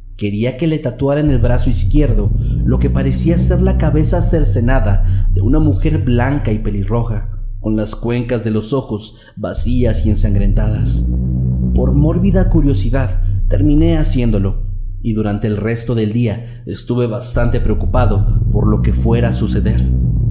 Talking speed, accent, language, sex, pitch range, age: 150 wpm, Mexican, Spanish, male, 100-120 Hz, 40-59